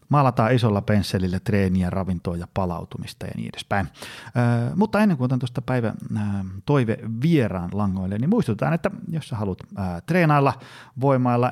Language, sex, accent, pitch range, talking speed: Finnish, male, native, 95-130 Hz, 155 wpm